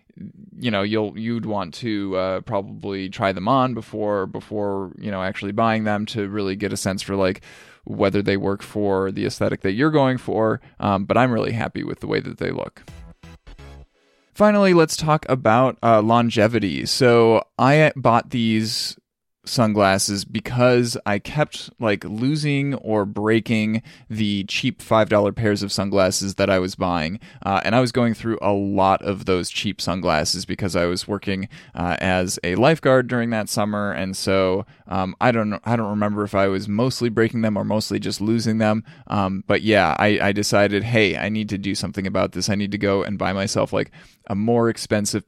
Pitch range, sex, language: 95-115 Hz, male, English